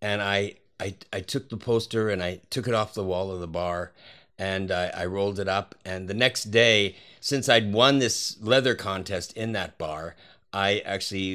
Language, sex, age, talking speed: English, male, 50-69, 200 wpm